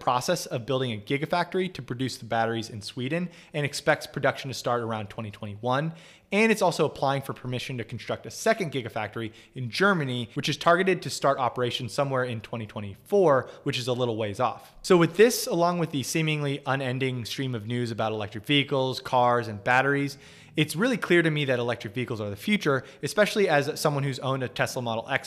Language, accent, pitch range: English, American, 115-145 Hz